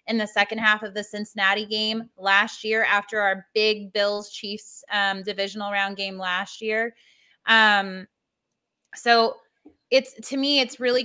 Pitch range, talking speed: 200-230 Hz, 145 wpm